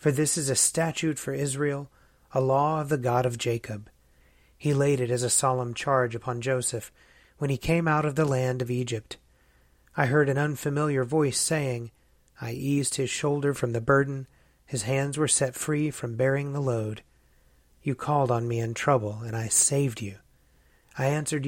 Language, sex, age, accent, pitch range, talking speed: English, male, 30-49, American, 115-140 Hz, 185 wpm